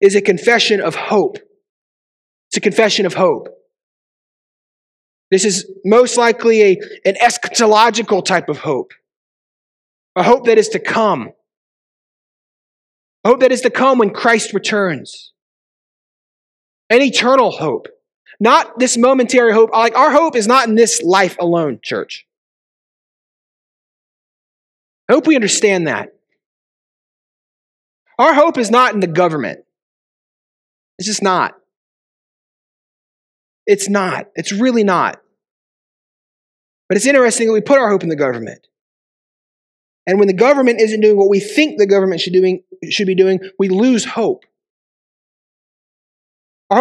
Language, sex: English, male